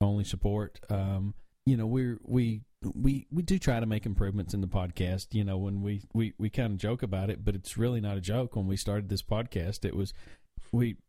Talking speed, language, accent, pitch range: 225 wpm, English, American, 100-115 Hz